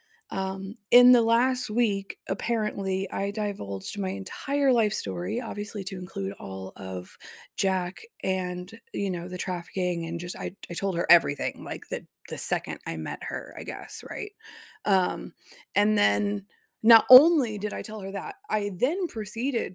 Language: English